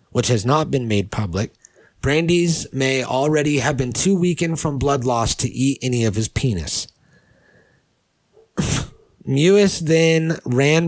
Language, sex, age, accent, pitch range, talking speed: English, male, 30-49, American, 120-150 Hz, 140 wpm